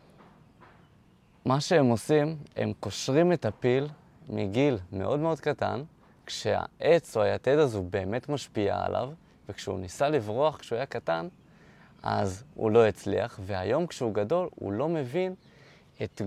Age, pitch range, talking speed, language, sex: 20-39, 100-135 Hz, 130 wpm, Hebrew, male